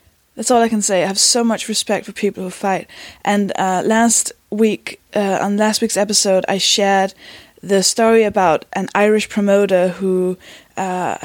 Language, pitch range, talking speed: English, 185-215 Hz, 175 wpm